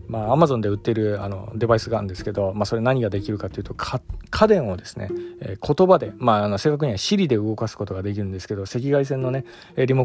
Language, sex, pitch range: Japanese, male, 105-135 Hz